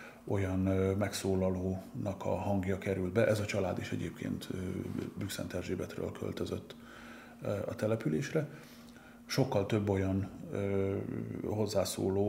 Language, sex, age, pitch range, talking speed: Hungarian, male, 30-49, 90-110 Hz, 100 wpm